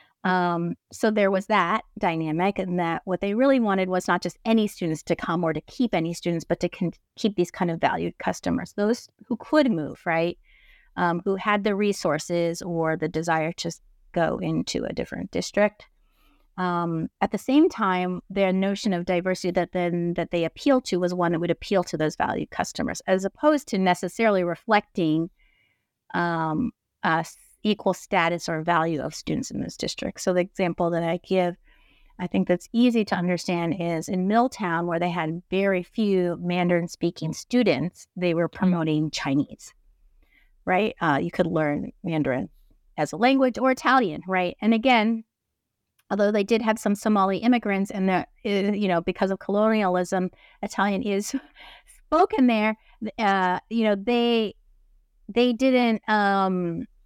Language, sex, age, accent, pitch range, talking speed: English, female, 30-49, American, 170-215 Hz, 165 wpm